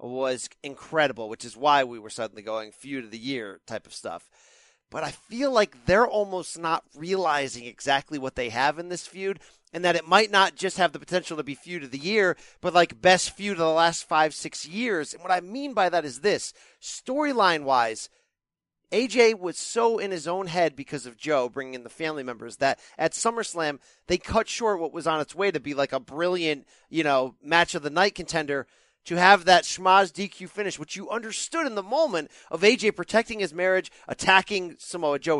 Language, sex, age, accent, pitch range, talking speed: English, male, 40-59, American, 155-220 Hz, 210 wpm